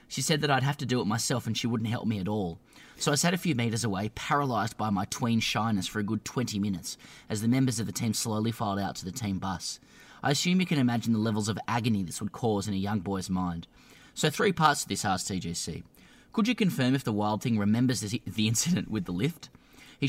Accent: Australian